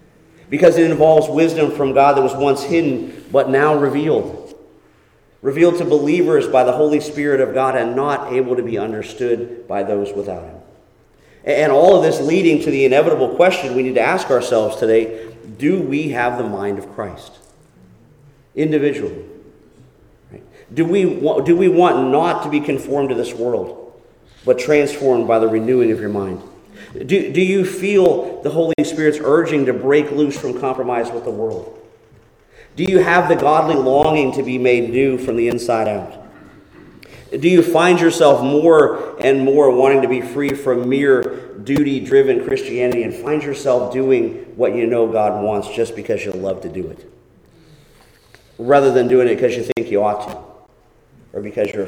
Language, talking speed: English, 170 wpm